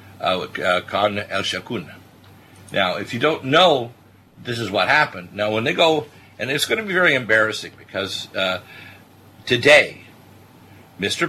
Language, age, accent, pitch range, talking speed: English, 50-69, American, 95-130 Hz, 155 wpm